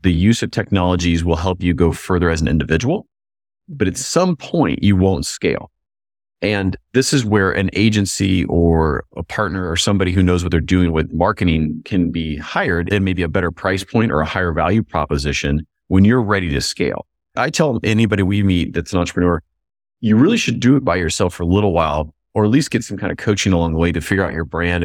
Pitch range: 80-105 Hz